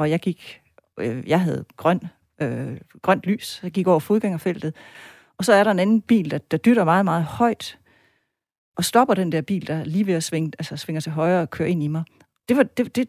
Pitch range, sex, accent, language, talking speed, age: 160-210 Hz, female, native, Danish, 225 wpm, 40-59